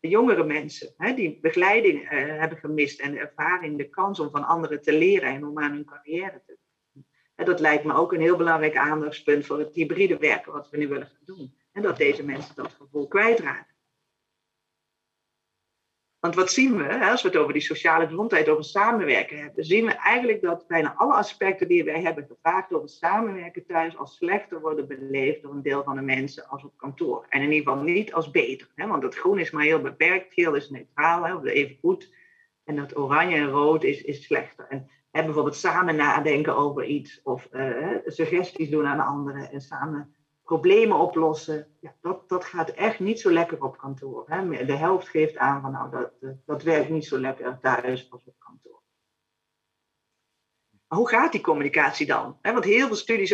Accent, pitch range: Dutch, 145-180 Hz